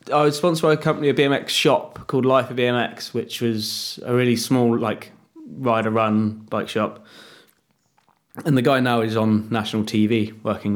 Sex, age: male, 20-39